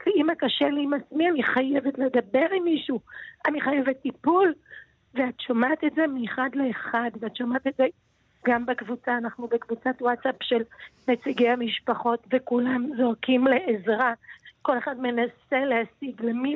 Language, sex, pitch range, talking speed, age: English, female, 240-275 Hz, 140 wpm, 40-59